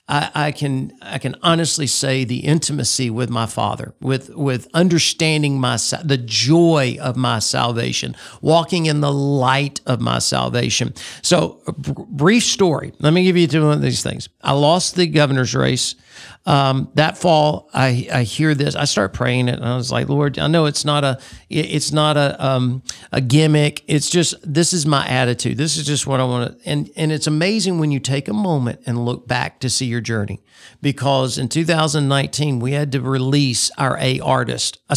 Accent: American